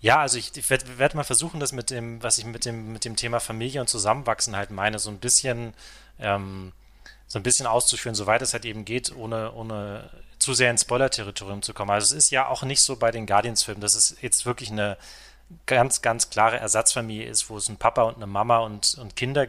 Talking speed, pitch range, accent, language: 230 wpm, 105-125 Hz, German, German